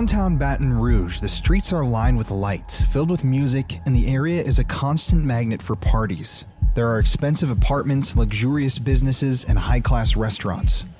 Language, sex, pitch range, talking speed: English, male, 105-140 Hz, 165 wpm